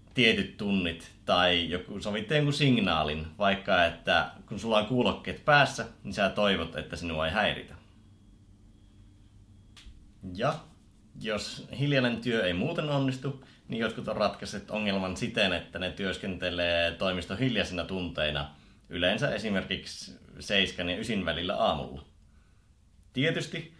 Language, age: Finnish, 30-49